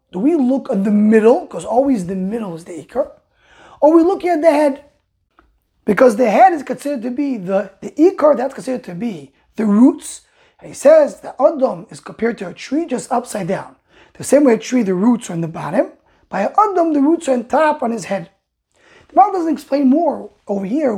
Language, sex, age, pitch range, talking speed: English, male, 20-39, 210-285 Hz, 220 wpm